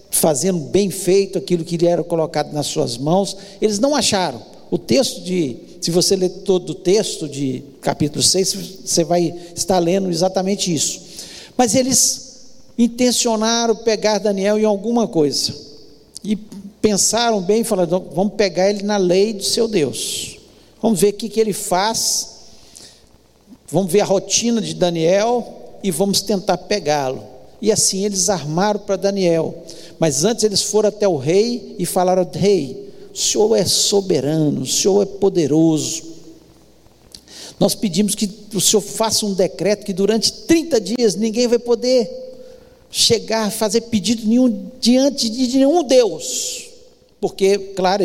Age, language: 60-79, Portuguese